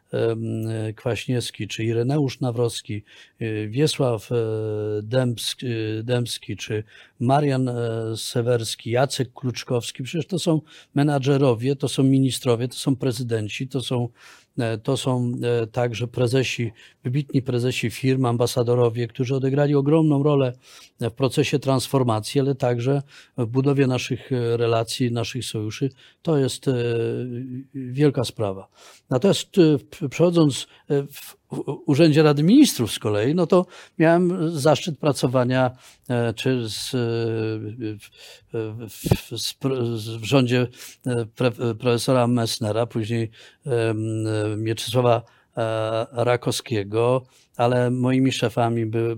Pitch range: 115-135 Hz